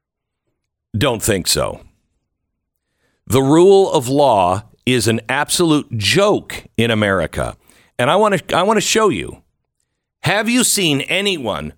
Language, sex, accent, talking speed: English, male, American, 130 wpm